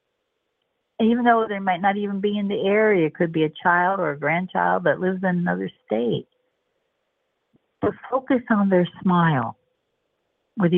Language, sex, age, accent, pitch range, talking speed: English, female, 60-79, American, 170-245 Hz, 165 wpm